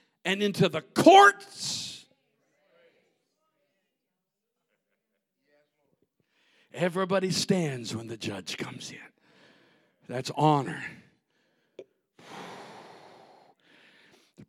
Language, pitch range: English, 135-185 Hz